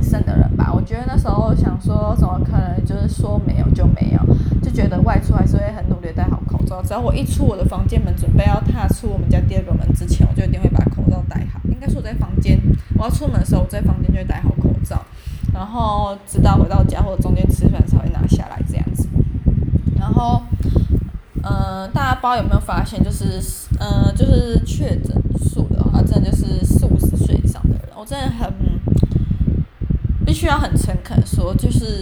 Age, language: 20-39, Chinese